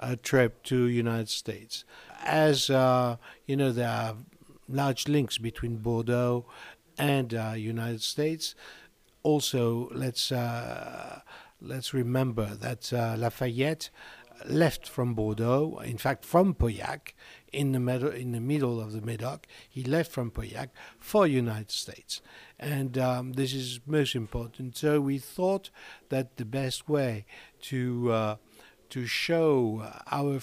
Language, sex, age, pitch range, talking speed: English, male, 60-79, 120-140 Hz, 135 wpm